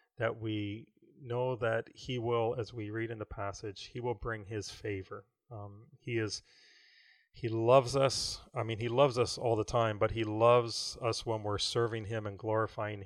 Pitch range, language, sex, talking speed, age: 105-125 Hz, English, male, 190 wpm, 30-49